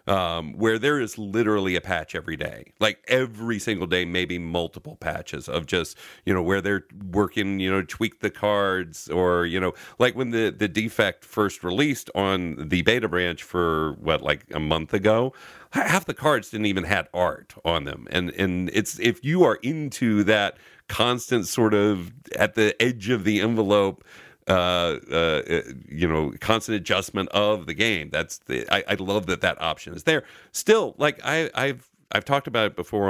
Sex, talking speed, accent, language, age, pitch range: male, 185 wpm, American, English, 40-59, 90-110 Hz